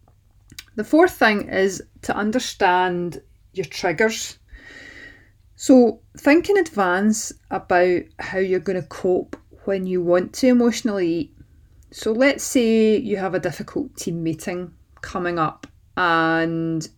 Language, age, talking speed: English, 30-49, 125 wpm